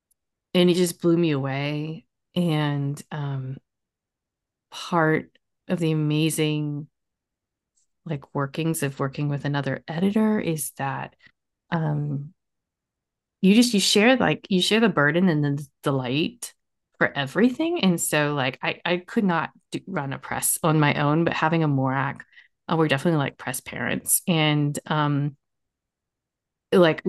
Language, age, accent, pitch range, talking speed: English, 30-49, American, 150-210 Hz, 135 wpm